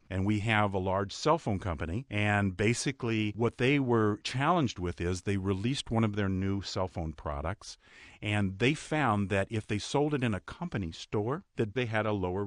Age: 50-69